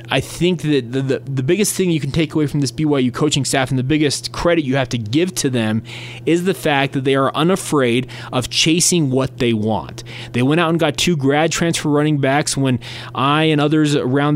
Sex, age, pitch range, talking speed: male, 20-39, 120-150 Hz, 225 wpm